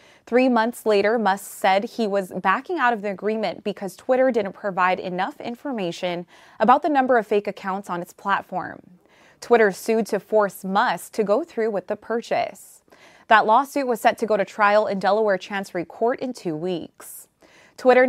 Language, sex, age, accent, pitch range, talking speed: English, female, 20-39, American, 190-230 Hz, 180 wpm